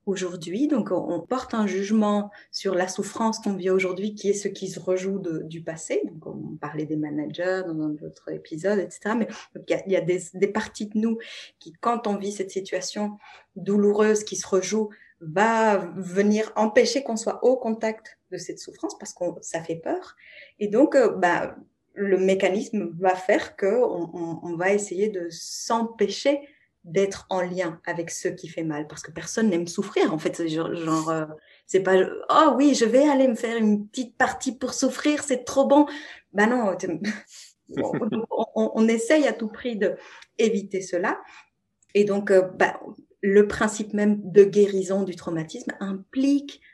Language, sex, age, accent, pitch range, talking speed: French, female, 20-39, French, 185-235 Hz, 175 wpm